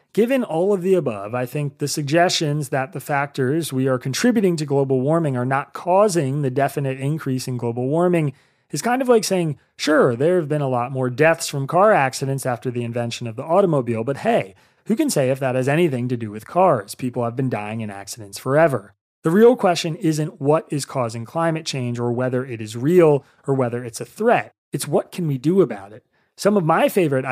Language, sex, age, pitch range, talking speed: English, male, 30-49, 125-170 Hz, 215 wpm